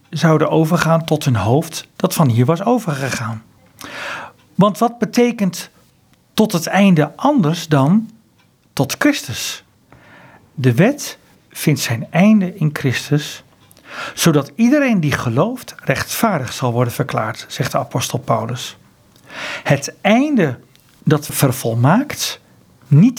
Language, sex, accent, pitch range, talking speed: Dutch, male, Dutch, 135-200 Hz, 115 wpm